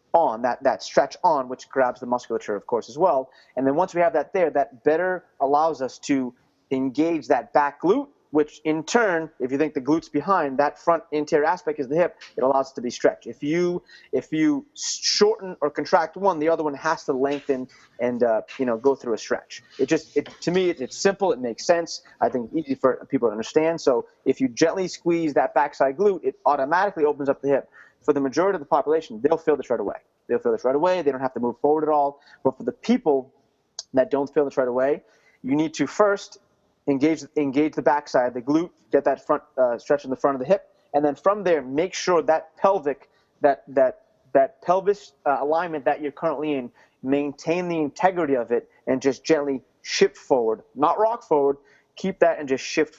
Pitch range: 140-180 Hz